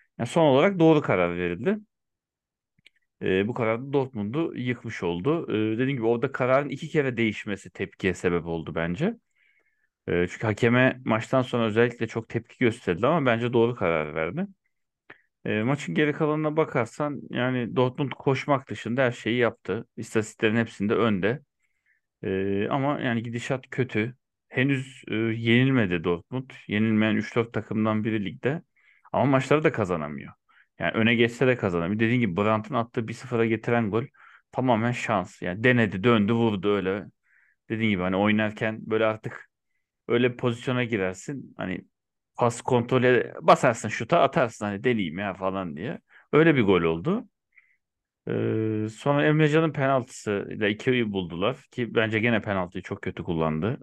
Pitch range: 105-130 Hz